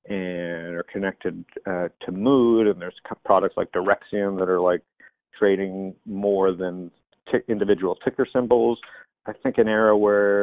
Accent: American